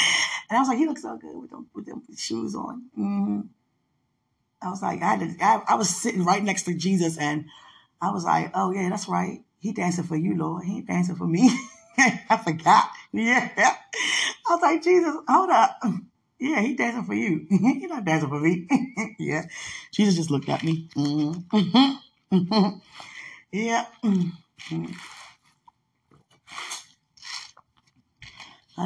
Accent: American